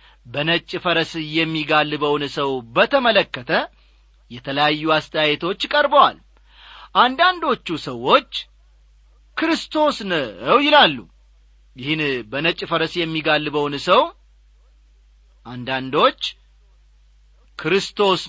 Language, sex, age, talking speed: English, male, 40-59, 60 wpm